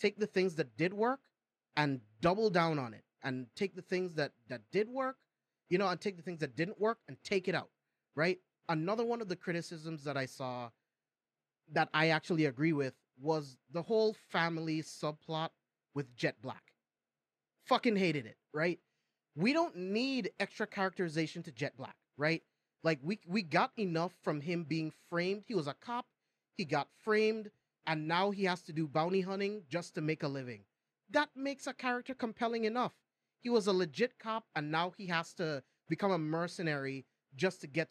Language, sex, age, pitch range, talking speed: English, male, 30-49, 160-220 Hz, 185 wpm